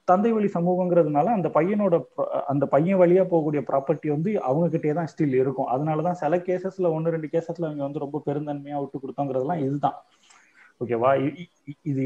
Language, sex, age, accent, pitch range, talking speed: Tamil, male, 30-49, native, 125-165 Hz, 160 wpm